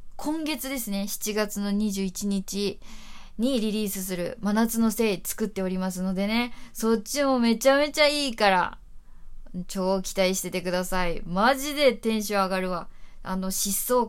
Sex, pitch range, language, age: female, 190-245 Hz, Japanese, 20-39